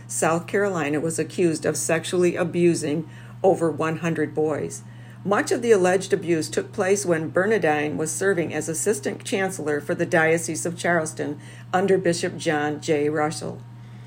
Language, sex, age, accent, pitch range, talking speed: English, female, 50-69, American, 125-175 Hz, 145 wpm